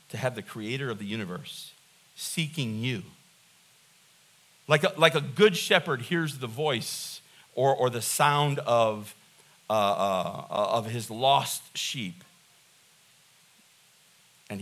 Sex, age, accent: male, 50-69, American